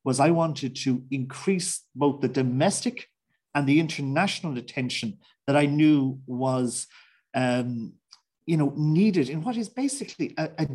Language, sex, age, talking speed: English, male, 40-59, 135 wpm